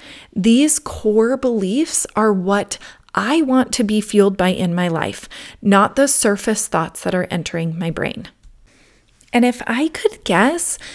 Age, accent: 30-49, American